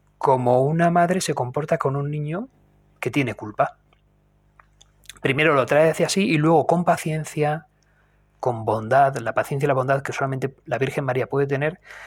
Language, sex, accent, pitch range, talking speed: Spanish, male, Spanish, 130-155 Hz, 170 wpm